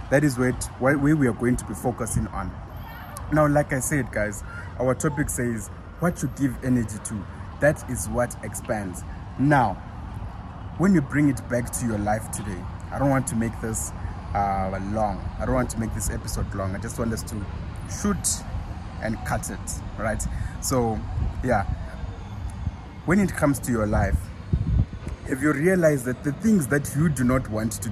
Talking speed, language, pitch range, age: 180 wpm, English, 95-130 Hz, 20-39